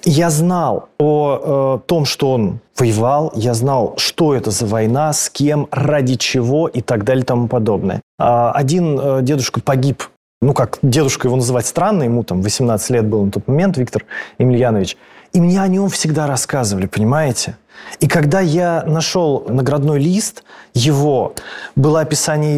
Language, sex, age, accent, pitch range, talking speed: Russian, male, 20-39, native, 120-155 Hz, 155 wpm